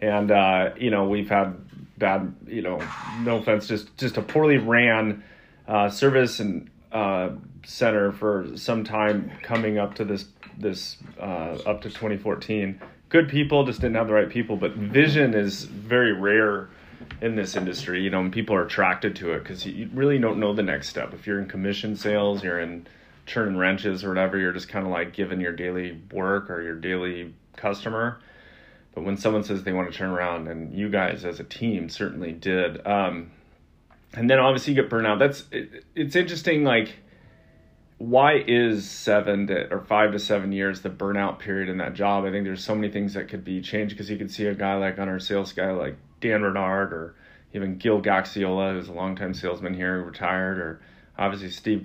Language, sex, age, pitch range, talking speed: English, male, 30-49, 95-110 Hz, 200 wpm